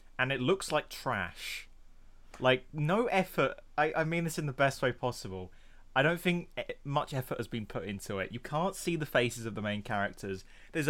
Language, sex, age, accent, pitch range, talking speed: English, male, 20-39, British, 100-150 Hz, 205 wpm